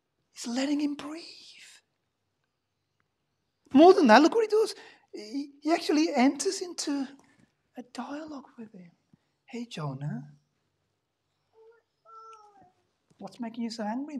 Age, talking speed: 40-59, 115 wpm